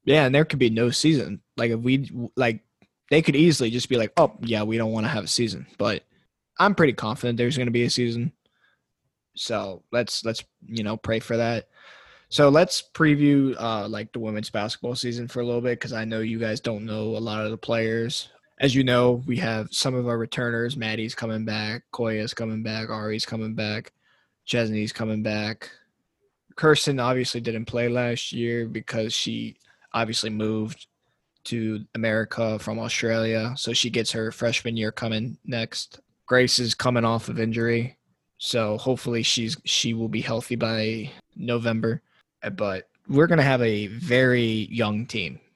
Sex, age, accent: male, 20-39, American